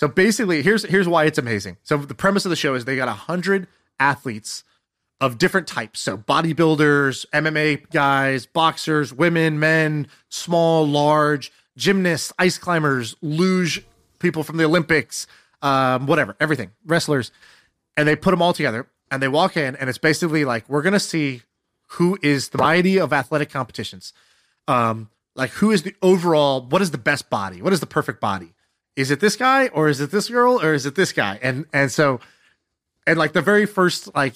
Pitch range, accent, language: 135-175 Hz, American, English